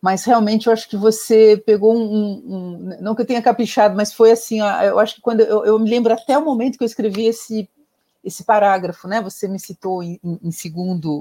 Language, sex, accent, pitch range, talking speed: Portuguese, female, Brazilian, 180-230 Hz, 225 wpm